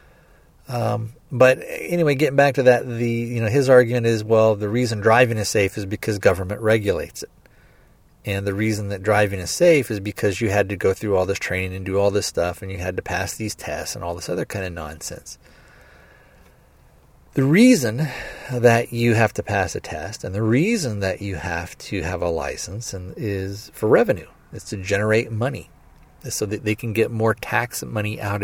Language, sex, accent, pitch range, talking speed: English, male, American, 95-120 Hz, 205 wpm